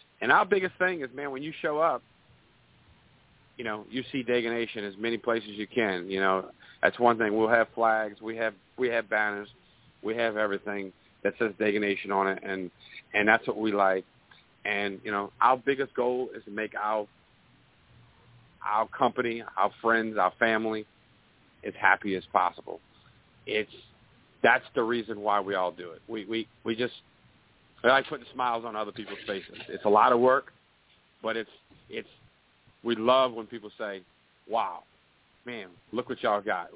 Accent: American